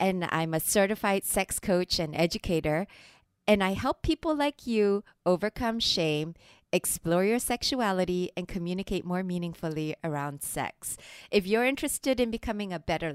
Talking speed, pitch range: 145 wpm, 175-230 Hz